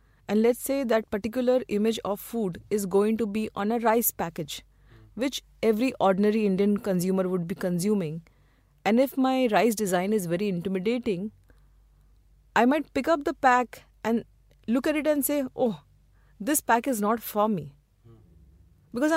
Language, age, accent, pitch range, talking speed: English, 30-49, Indian, 175-230 Hz, 165 wpm